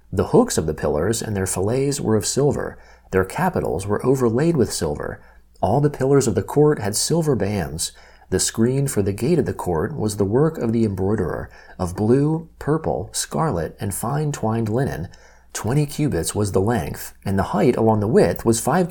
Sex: male